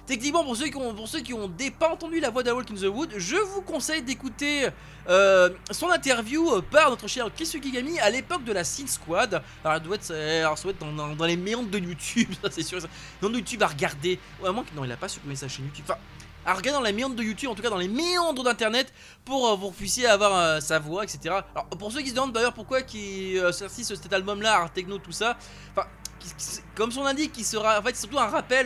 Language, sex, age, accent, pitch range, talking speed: French, male, 20-39, French, 180-255 Hz, 245 wpm